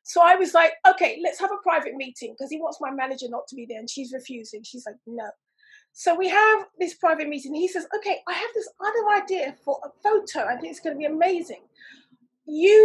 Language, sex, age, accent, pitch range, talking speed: English, female, 30-49, British, 300-390 Hz, 240 wpm